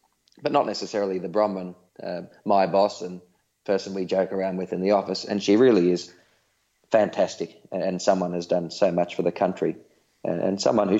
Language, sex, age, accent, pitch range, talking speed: English, male, 30-49, Australian, 90-100 Hz, 185 wpm